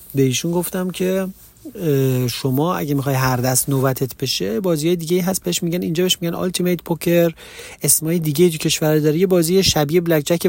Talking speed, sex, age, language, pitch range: 165 wpm, male, 40-59, Persian, 135-175 Hz